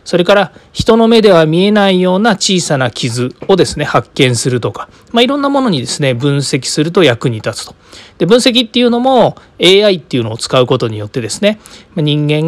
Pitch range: 125-200 Hz